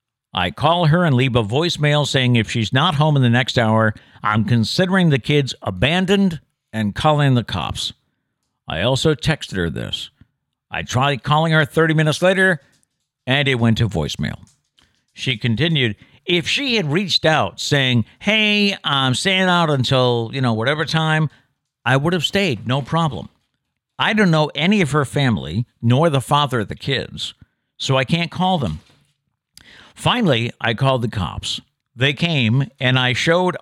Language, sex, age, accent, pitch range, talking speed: English, male, 50-69, American, 120-155 Hz, 165 wpm